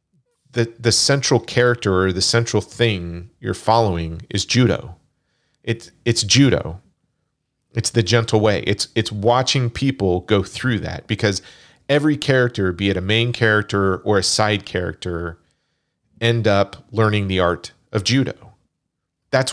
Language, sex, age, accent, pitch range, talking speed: English, male, 40-59, American, 95-120 Hz, 140 wpm